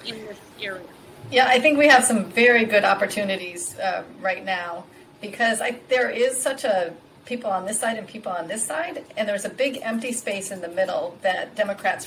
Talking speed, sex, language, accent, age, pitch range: 200 wpm, female, English, American, 40-59, 200-255 Hz